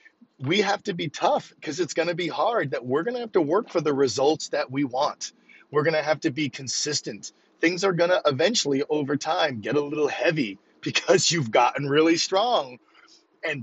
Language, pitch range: English, 130-170 Hz